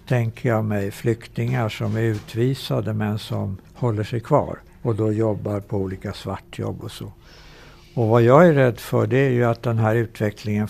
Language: Swedish